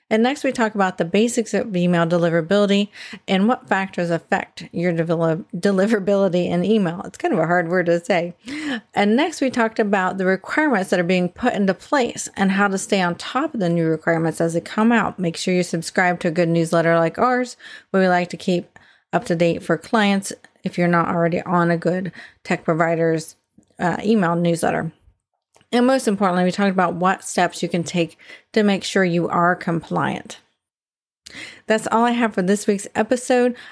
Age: 30-49